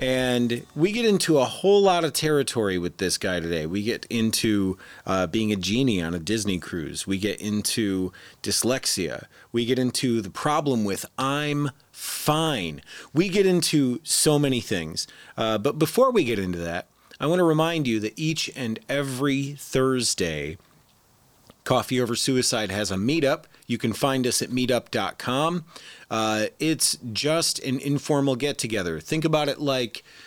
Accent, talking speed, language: American, 160 wpm, English